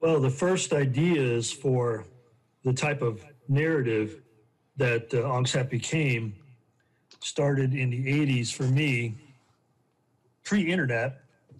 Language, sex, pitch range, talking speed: English, male, 125-145 Hz, 105 wpm